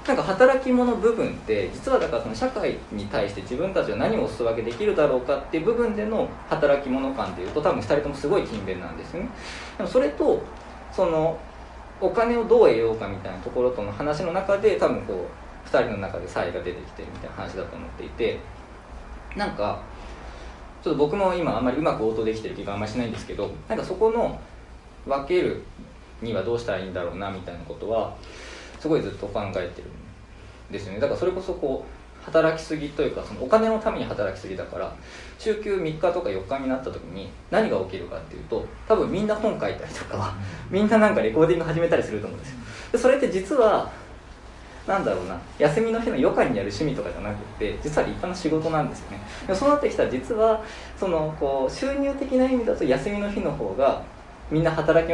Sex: male